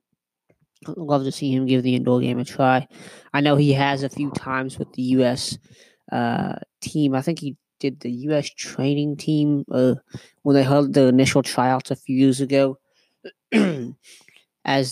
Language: English